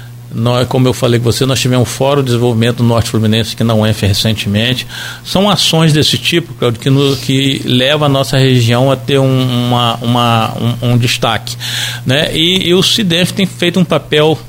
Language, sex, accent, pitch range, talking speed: Portuguese, male, Brazilian, 120-170 Hz, 190 wpm